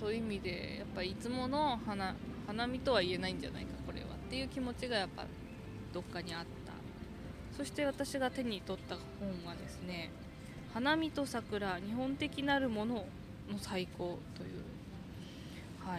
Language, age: Japanese, 20-39